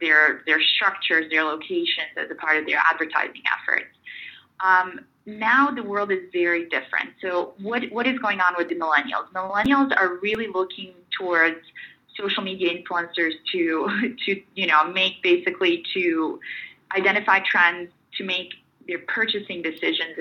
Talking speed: 150 wpm